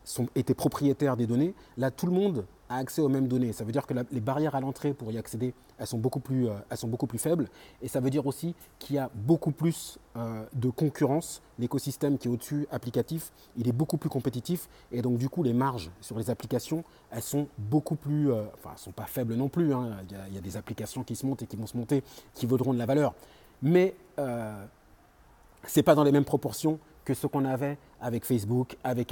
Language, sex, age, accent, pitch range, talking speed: French, male, 30-49, French, 120-150 Hz, 240 wpm